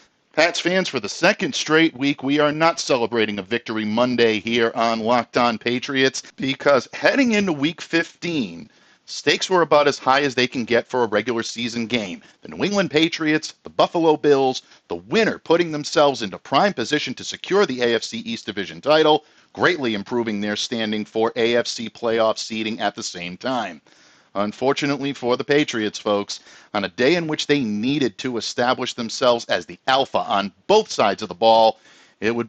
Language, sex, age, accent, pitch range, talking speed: English, male, 50-69, American, 110-150 Hz, 180 wpm